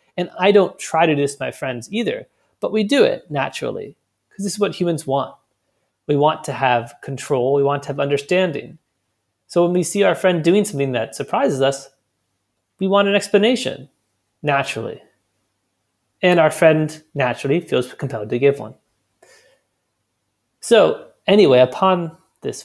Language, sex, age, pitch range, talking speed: English, male, 30-49, 120-175 Hz, 160 wpm